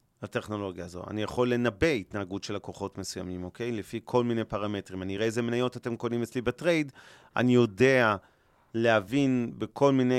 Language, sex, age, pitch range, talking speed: Hebrew, male, 30-49, 100-125 Hz, 160 wpm